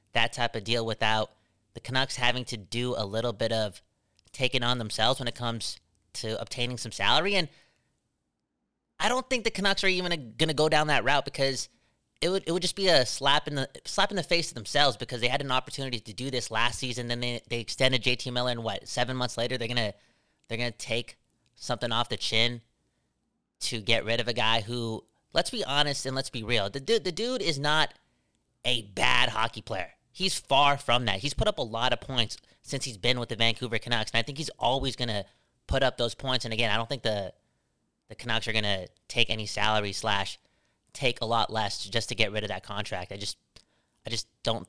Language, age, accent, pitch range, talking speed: English, 20-39, American, 110-130 Hz, 225 wpm